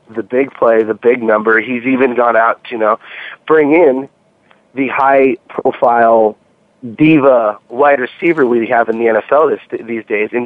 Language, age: English, 30-49